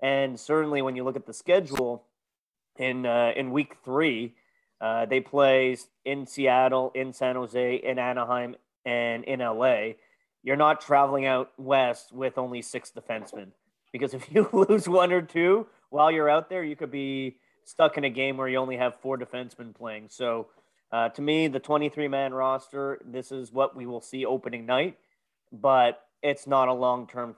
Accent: American